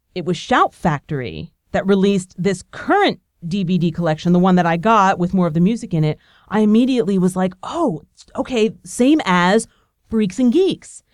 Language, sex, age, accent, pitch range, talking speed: English, female, 40-59, American, 180-255 Hz, 180 wpm